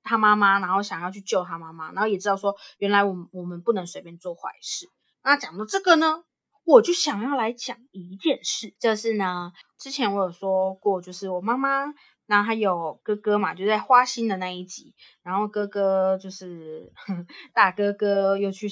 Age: 20-39